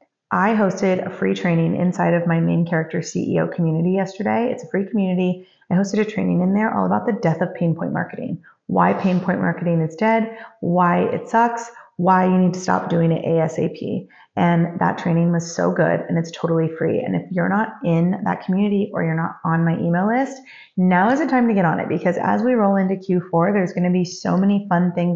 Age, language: 30-49, English